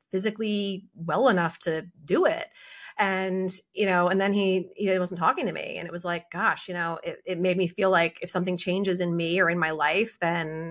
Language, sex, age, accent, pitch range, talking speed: English, female, 30-49, American, 180-245 Hz, 225 wpm